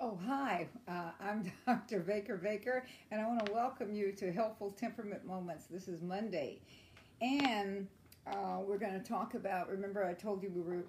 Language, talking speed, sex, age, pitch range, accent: English, 180 wpm, female, 50-69, 175-210 Hz, American